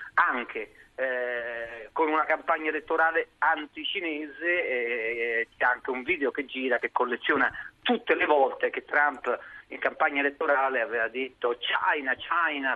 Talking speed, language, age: 130 wpm, Italian, 40-59